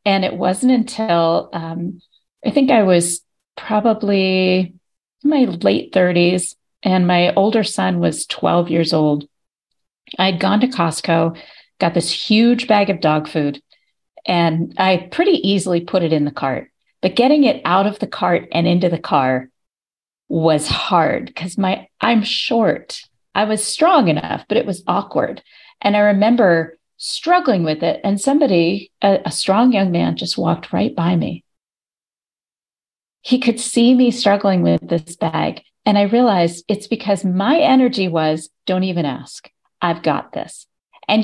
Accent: American